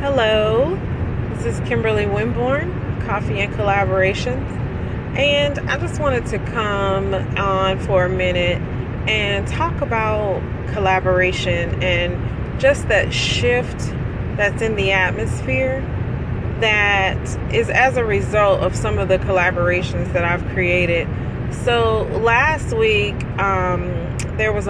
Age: 30-49